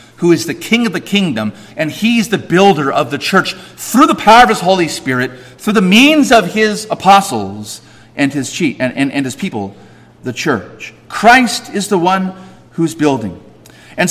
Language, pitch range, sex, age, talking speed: English, 135-230 Hz, male, 40-59, 185 wpm